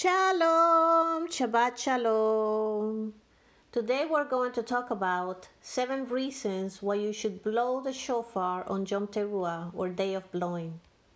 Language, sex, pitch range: English, female, 200-240 Hz